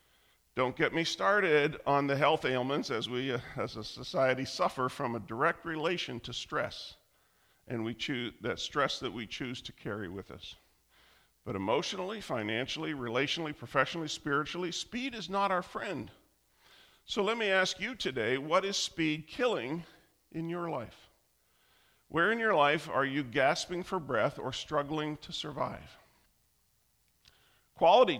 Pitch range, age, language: 120-165 Hz, 50-69, English